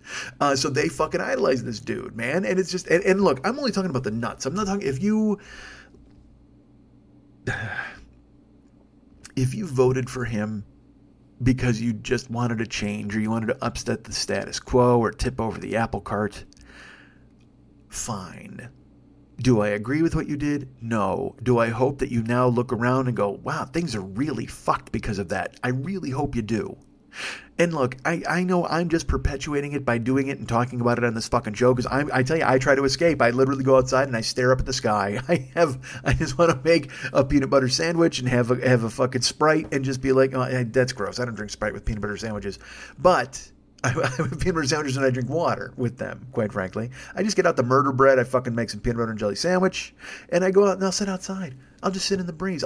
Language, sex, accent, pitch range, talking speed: English, male, American, 120-160 Hz, 225 wpm